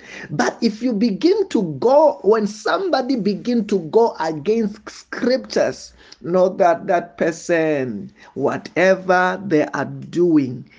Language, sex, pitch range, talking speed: English, male, 170-280 Hz, 115 wpm